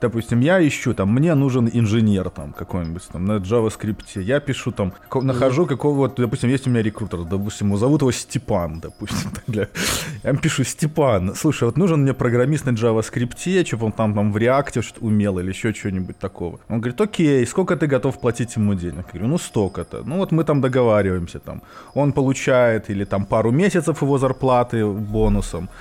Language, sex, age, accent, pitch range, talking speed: Russian, male, 20-39, native, 105-140 Hz, 175 wpm